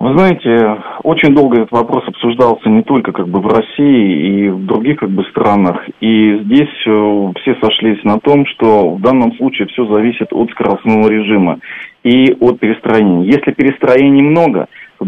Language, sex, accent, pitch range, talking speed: Russian, male, native, 105-130 Hz, 165 wpm